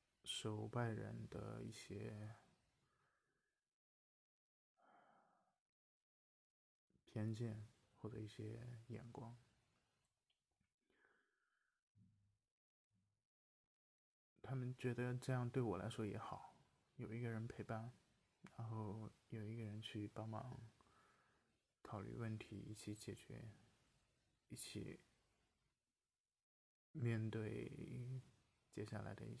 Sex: male